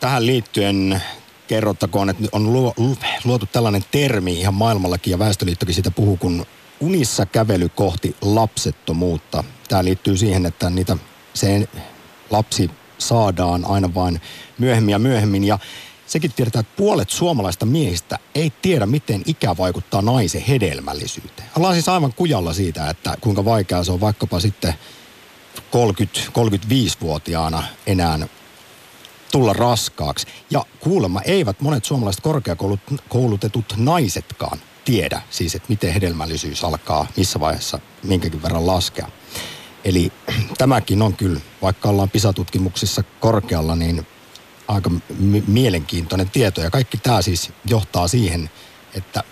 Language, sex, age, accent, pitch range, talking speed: Finnish, male, 50-69, native, 90-120 Hz, 120 wpm